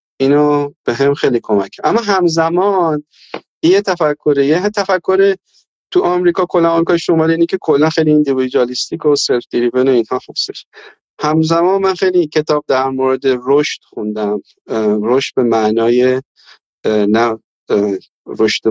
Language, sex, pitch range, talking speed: Persian, male, 125-165 Hz, 120 wpm